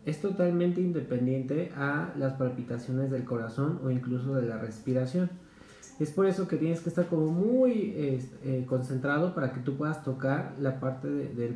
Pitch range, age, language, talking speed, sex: 130-165 Hz, 30-49, Spanish, 170 wpm, male